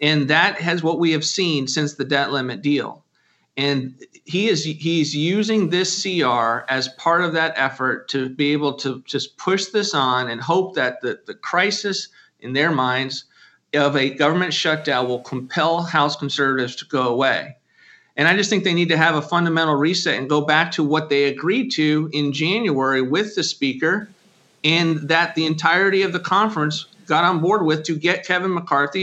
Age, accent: 40-59, American